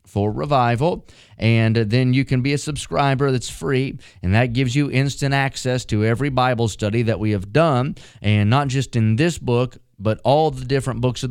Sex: male